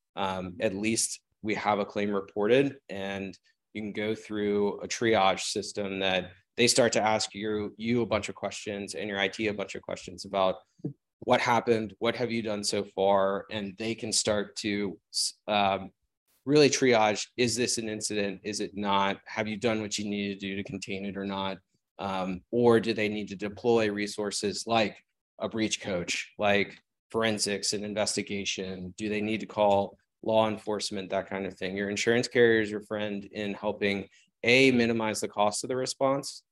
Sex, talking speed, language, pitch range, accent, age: male, 185 wpm, English, 100-110 Hz, American, 20-39